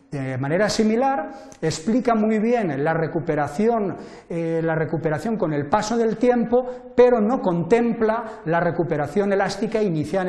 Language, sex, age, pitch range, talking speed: Spanish, male, 40-59, 165-230 Hz, 120 wpm